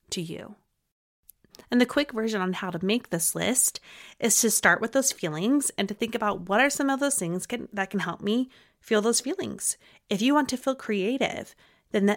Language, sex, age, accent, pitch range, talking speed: English, female, 30-49, American, 185-245 Hz, 205 wpm